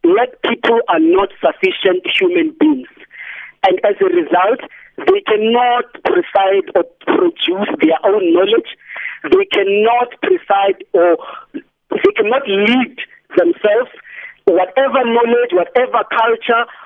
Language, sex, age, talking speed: English, male, 50-69, 110 wpm